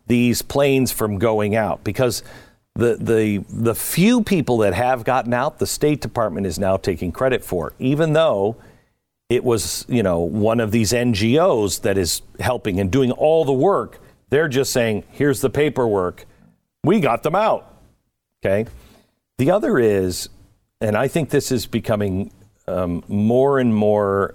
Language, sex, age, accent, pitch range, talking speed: English, male, 50-69, American, 100-130 Hz, 160 wpm